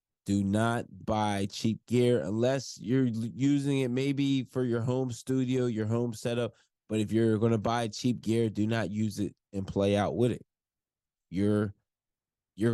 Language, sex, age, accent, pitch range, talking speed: English, male, 20-39, American, 105-120 Hz, 165 wpm